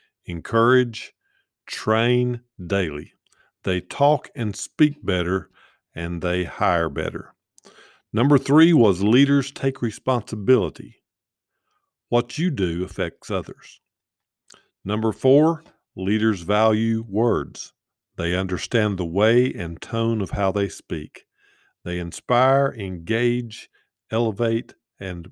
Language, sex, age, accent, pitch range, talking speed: English, male, 50-69, American, 95-130 Hz, 100 wpm